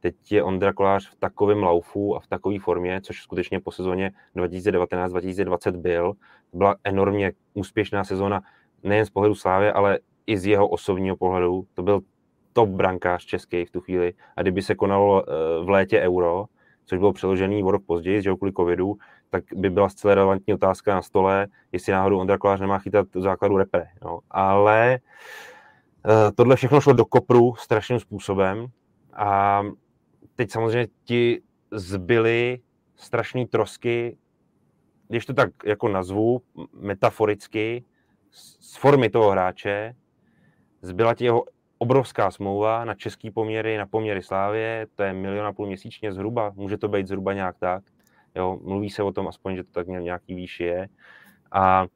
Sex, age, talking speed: male, 20-39, 155 wpm